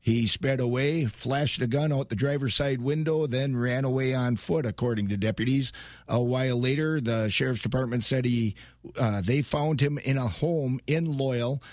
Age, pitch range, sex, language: 50-69, 125-150 Hz, male, English